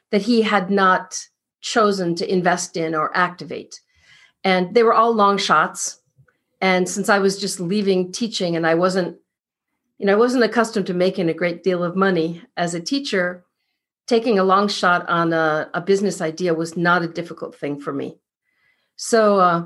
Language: English